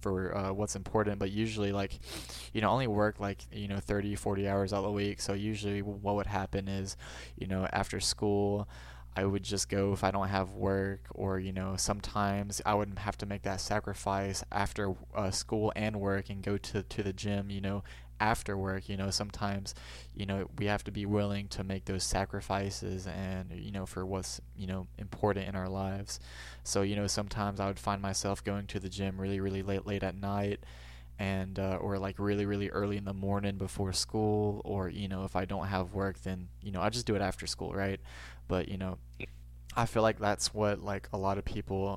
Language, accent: English, American